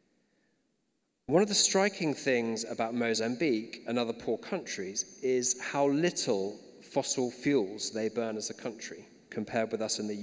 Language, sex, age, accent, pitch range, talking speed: English, male, 40-59, British, 105-130 Hz, 155 wpm